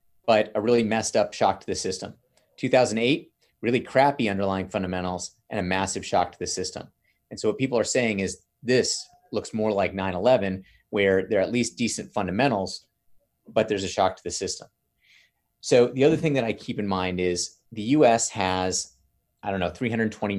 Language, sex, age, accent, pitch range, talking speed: English, male, 30-49, American, 95-115 Hz, 190 wpm